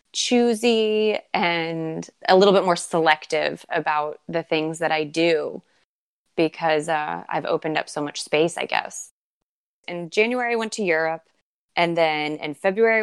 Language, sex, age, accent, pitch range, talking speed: English, female, 20-39, American, 165-200 Hz, 150 wpm